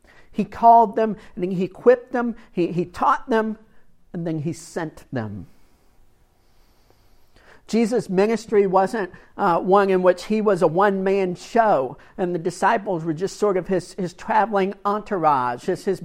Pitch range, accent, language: 165-205 Hz, American, English